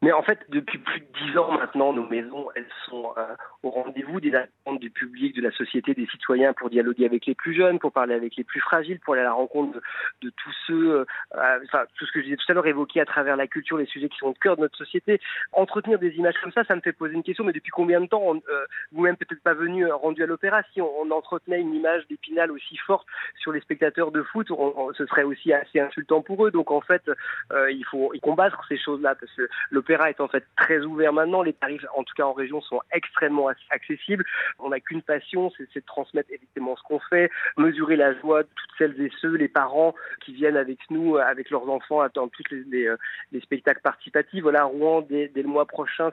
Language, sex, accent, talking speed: French, male, French, 250 wpm